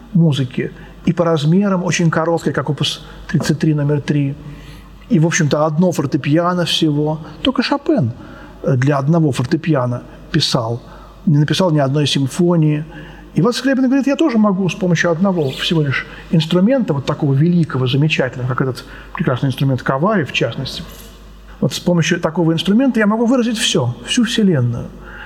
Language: Russian